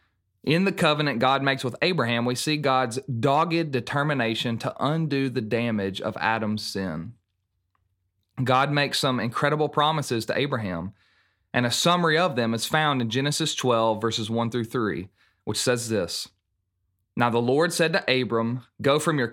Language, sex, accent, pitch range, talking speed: English, male, American, 110-150 Hz, 160 wpm